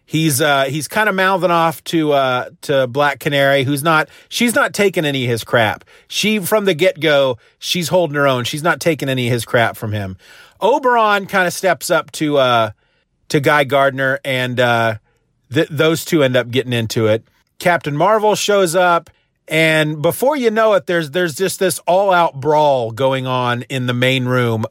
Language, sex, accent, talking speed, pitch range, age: English, male, American, 190 wpm, 125-170 Hz, 40-59